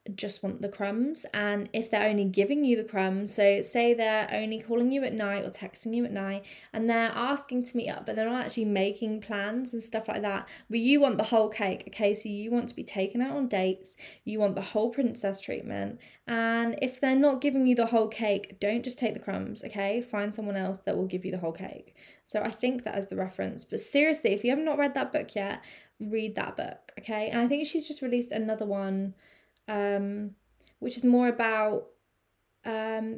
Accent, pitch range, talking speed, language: British, 205-250 Hz, 220 wpm, English